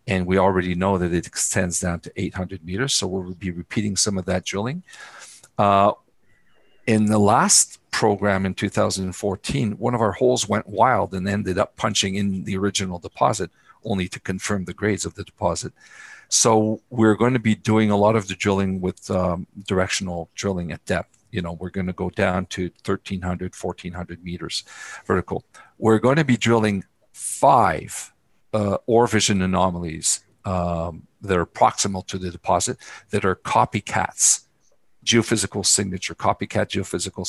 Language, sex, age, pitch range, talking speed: English, male, 50-69, 90-105 Hz, 165 wpm